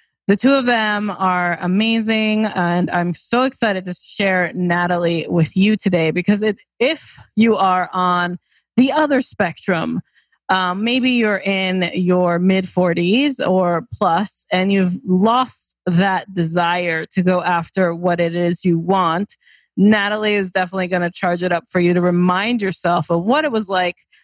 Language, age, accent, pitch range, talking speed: English, 20-39, American, 175-215 Hz, 155 wpm